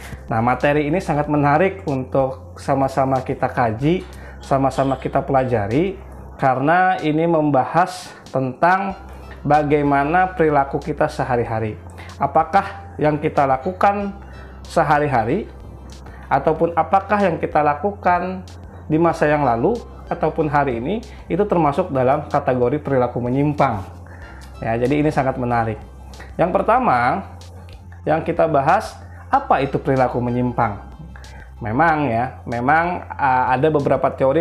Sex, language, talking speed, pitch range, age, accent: male, Indonesian, 110 wpm, 115-160 Hz, 20-39, native